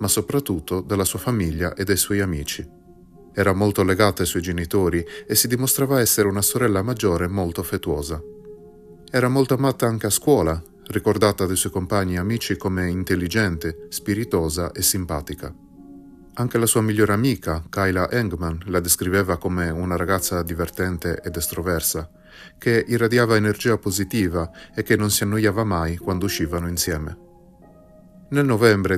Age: 30-49